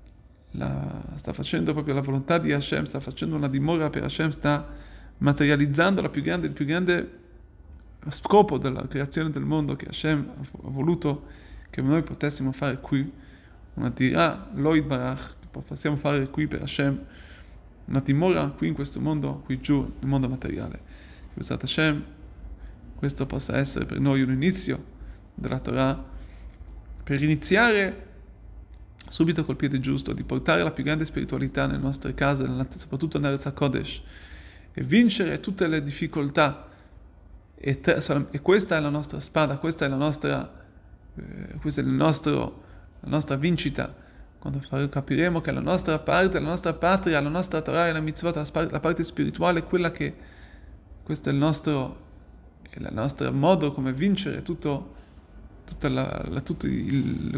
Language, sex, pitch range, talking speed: Italian, male, 130-155 Hz, 165 wpm